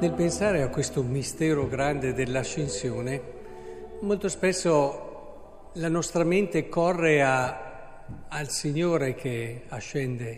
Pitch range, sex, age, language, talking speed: 125-170 Hz, male, 50-69, Italian, 100 wpm